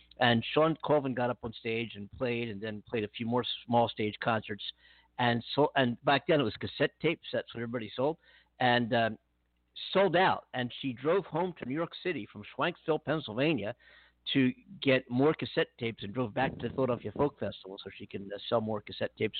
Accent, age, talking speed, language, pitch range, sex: American, 50-69, 205 wpm, English, 110-145 Hz, male